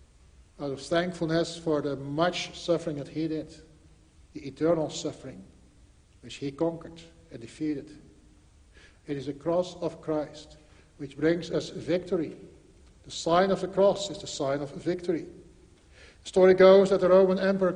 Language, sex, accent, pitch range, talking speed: English, male, Dutch, 170-195 Hz, 150 wpm